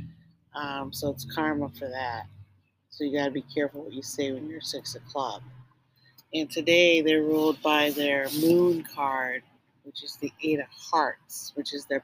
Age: 40-59